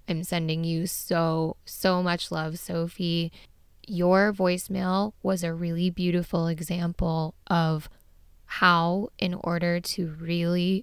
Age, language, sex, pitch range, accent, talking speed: 10-29, English, female, 165-185 Hz, American, 115 wpm